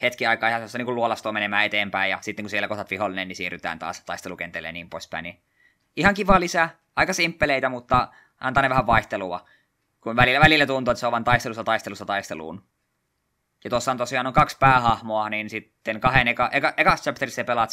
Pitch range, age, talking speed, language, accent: 110-135 Hz, 20-39, 190 wpm, Finnish, native